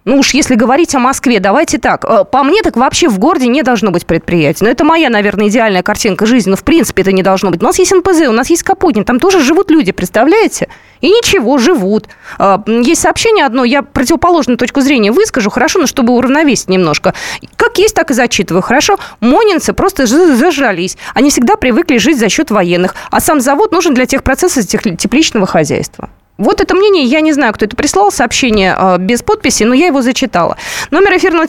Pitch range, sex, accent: 215-325 Hz, female, native